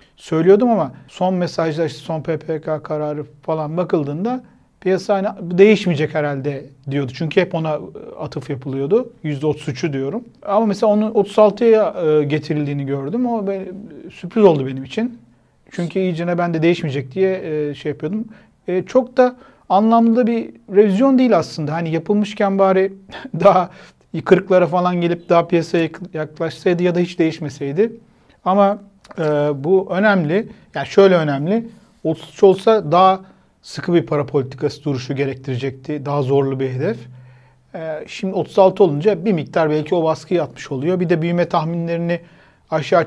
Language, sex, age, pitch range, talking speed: Turkish, male, 40-59, 150-195 Hz, 135 wpm